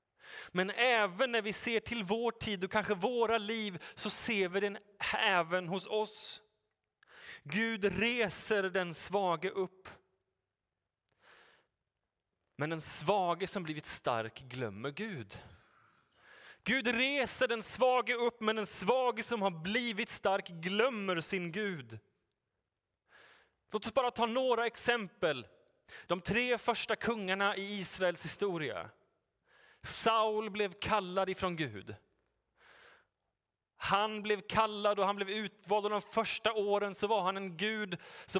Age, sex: 30-49, male